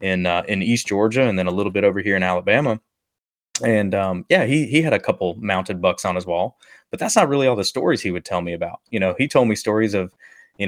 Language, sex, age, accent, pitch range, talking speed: English, male, 20-39, American, 90-110 Hz, 265 wpm